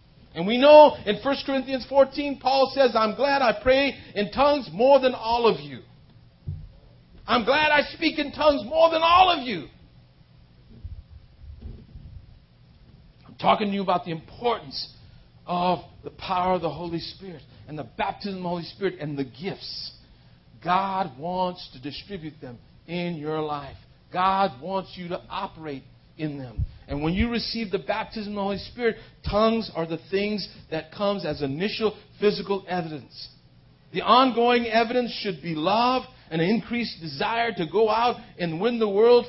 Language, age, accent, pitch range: English, 50-69, American, 160-235 Hz